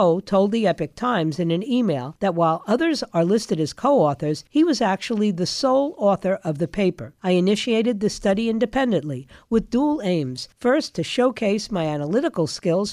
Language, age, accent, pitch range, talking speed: English, 50-69, American, 170-230 Hz, 170 wpm